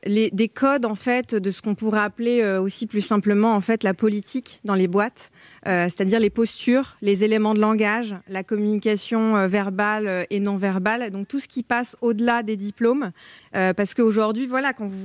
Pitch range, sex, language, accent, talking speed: 195-240 Hz, female, French, French, 195 wpm